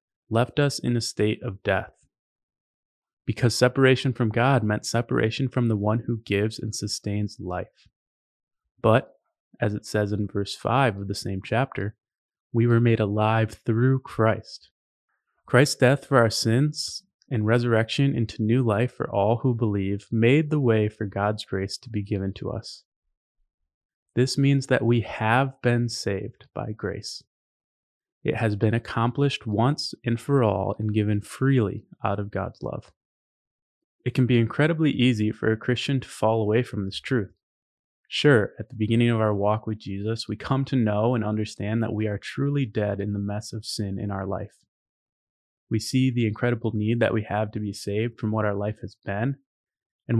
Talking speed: 175 wpm